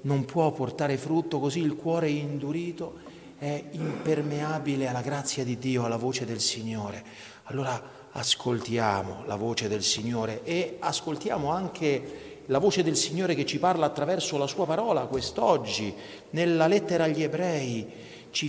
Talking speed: 145 wpm